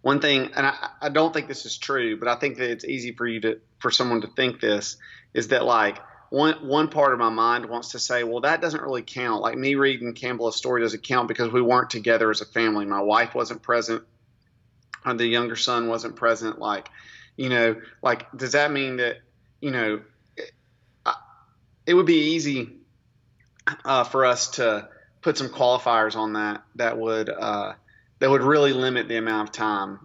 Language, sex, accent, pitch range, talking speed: English, male, American, 110-125 Hz, 200 wpm